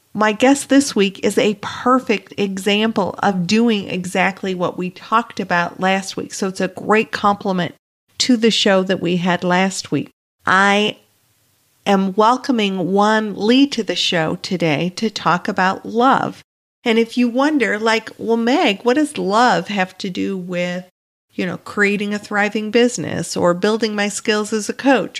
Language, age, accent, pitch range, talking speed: English, 50-69, American, 190-230 Hz, 165 wpm